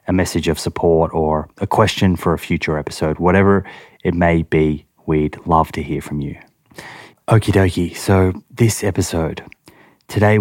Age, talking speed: 20-39, 155 wpm